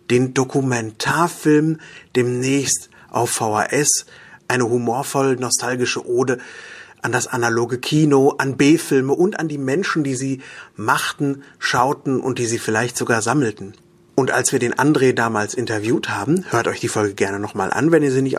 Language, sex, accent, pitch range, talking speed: German, male, German, 115-145 Hz, 155 wpm